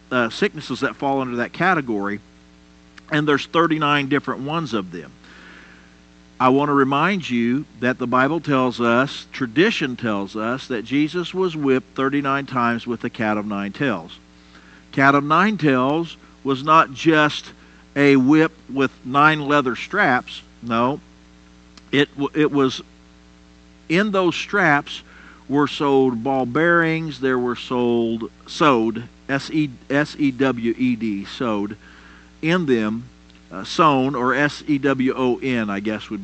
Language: English